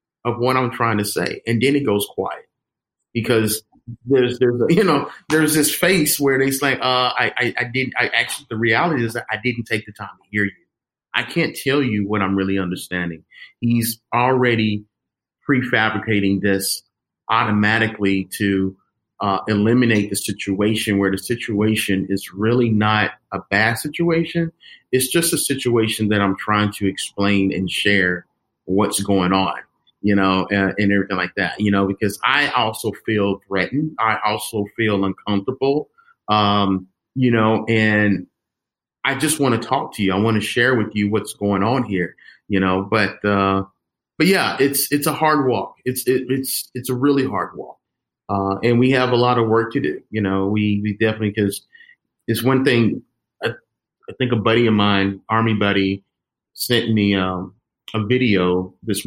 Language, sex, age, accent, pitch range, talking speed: English, male, 30-49, American, 100-125 Hz, 175 wpm